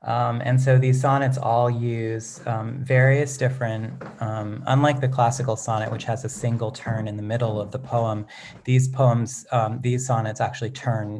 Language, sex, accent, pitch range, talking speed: English, male, American, 115-130 Hz, 175 wpm